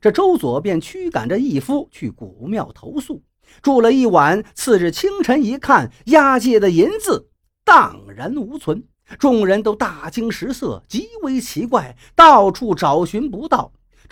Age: 50-69